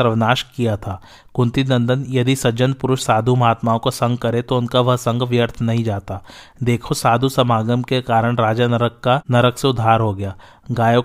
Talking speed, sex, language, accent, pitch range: 185 wpm, male, Hindi, native, 120-130 Hz